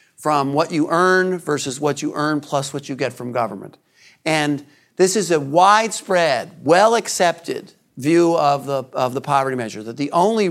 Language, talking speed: English, 170 wpm